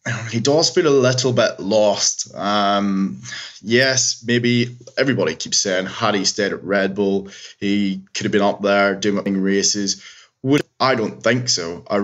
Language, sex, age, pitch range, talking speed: English, male, 20-39, 100-120 Hz, 165 wpm